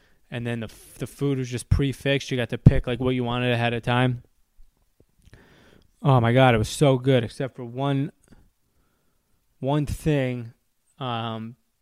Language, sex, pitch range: English, male, 115-140 Hz